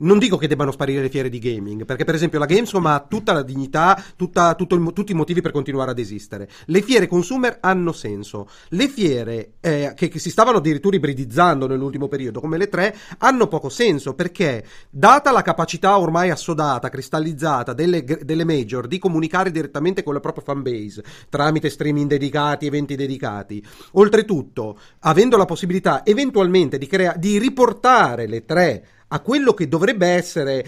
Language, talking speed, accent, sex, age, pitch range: Italian, 175 wpm, native, male, 40-59, 140-185 Hz